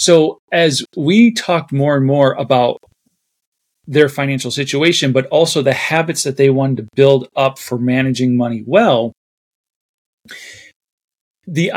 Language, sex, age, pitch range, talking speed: English, male, 40-59, 130-170 Hz, 135 wpm